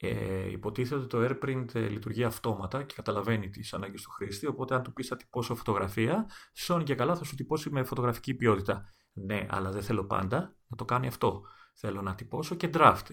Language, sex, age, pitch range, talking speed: Greek, male, 30-49, 105-140 Hz, 200 wpm